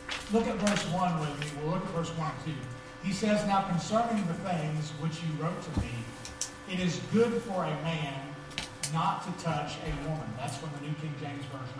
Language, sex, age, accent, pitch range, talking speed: English, male, 40-59, American, 145-180 Hz, 215 wpm